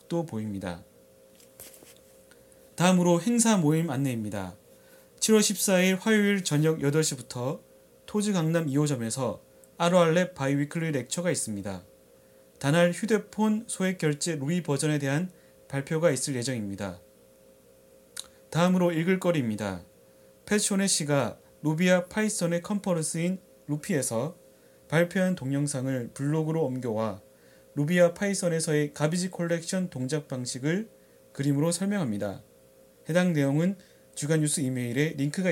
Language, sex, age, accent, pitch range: Korean, male, 30-49, native, 130-180 Hz